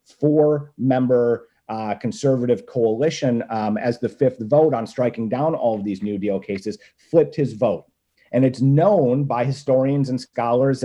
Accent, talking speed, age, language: American, 160 wpm, 40-59, English